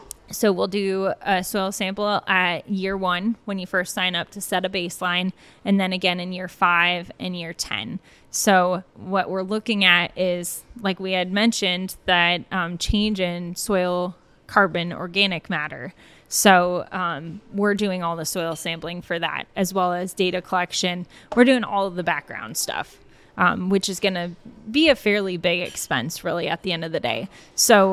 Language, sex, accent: English, female, American